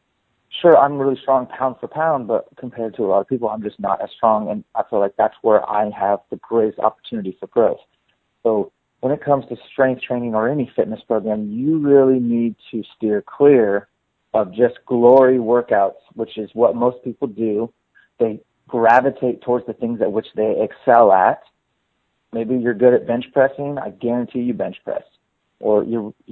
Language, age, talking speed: English, 40-59, 185 wpm